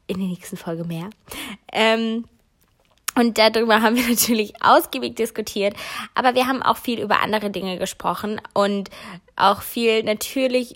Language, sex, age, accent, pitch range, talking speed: German, female, 20-39, German, 190-230 Hz, 145 wpm